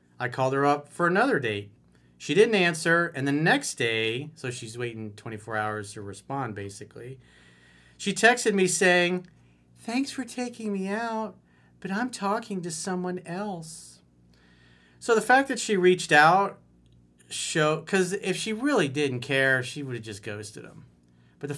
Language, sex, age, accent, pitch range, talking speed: English, male, 40-59, American, 105-175 Hz, 160 wpm